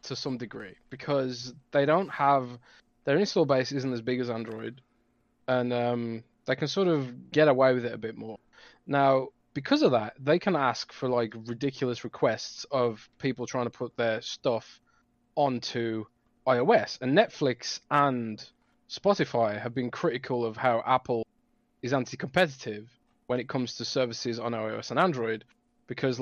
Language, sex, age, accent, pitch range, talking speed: English, male, 20-39, British, 120-155 Hz, 160 wpm